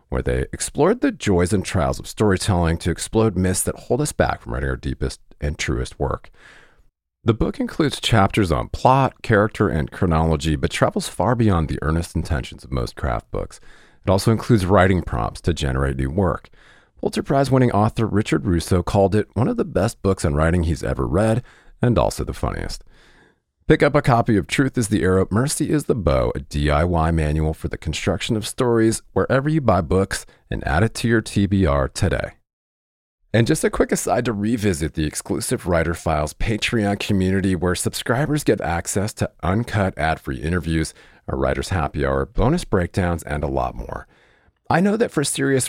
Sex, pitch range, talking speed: male, 80-110 Hz, 185 wpm